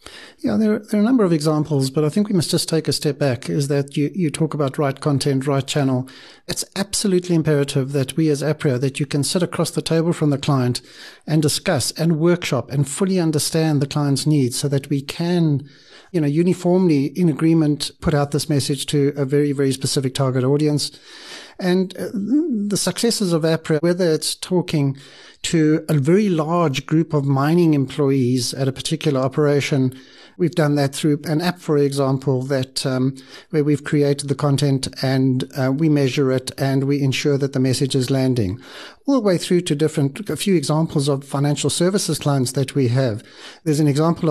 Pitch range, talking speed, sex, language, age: 140-160 Hz, 195 wpm, male, English, 60-79